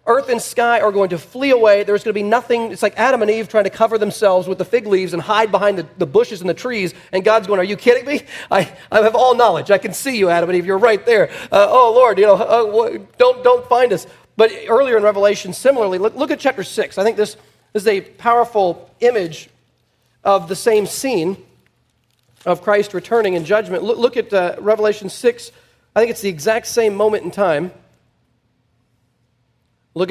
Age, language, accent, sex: 40-59, English, American, male